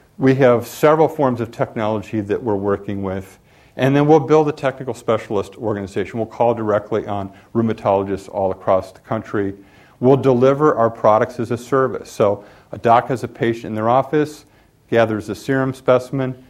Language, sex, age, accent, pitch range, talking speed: English, male, 50-69, American, 100-125 Hz, 170 wpm